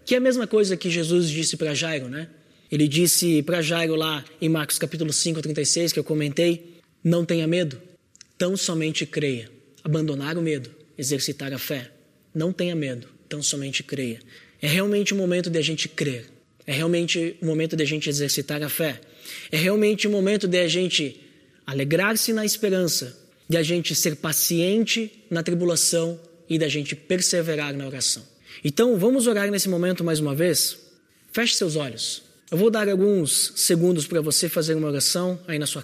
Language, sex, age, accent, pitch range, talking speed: Portuguese, male, 20-39, Brazilian, 150-175 Hz, 180 wpm